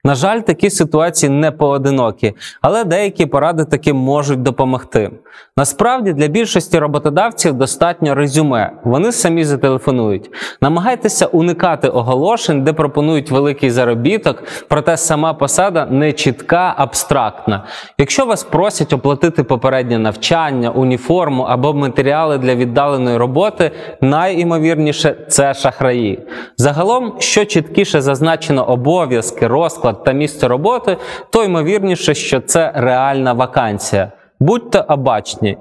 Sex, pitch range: male, 130-170 Hz